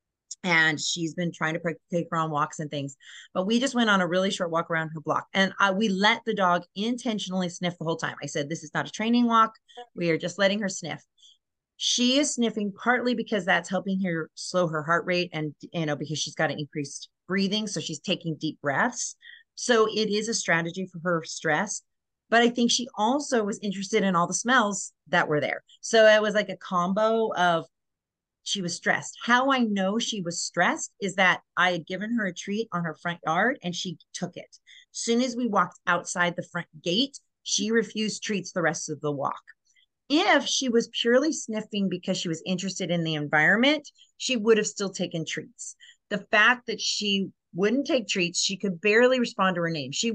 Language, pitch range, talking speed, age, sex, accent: English, 165-225 Hz, 210 wpm, 30-49, female, American